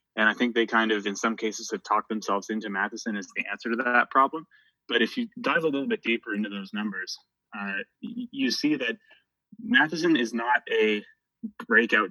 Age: 20-39